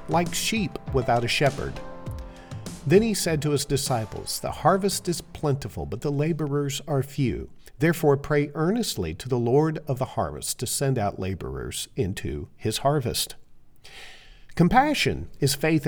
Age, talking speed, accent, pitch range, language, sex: 50-69, 145 wpm, American, 105-155 Hz, English, male